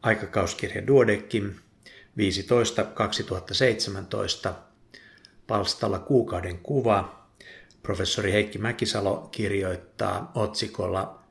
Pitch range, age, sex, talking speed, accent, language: 95-115 Hz, 60-79, male, 60 wpm, native, Finnish